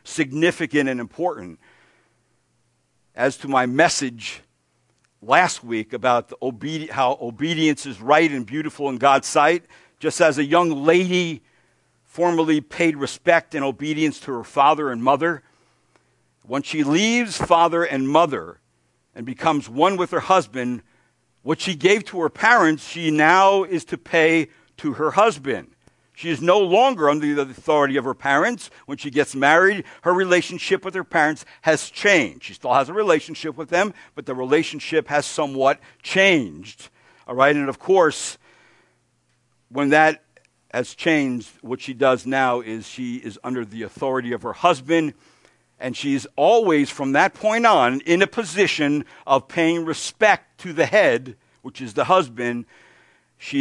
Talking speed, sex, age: 155 wpm, male, 60-79